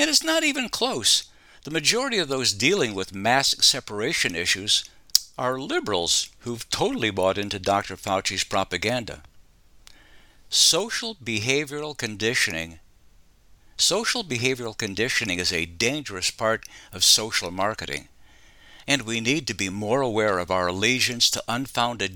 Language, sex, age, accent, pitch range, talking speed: English, male, 60-79, American, 95-130 Hz, 130 wpm